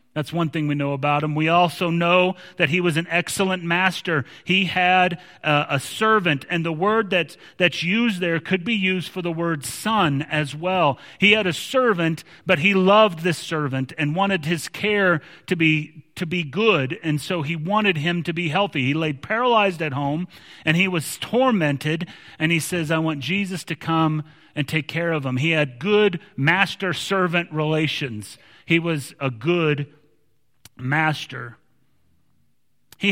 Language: English